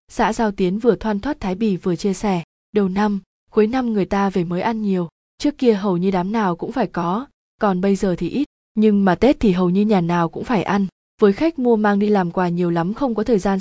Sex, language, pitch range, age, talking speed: female, Vietnamese, 185-225 Hz, 20-39, 260 wpm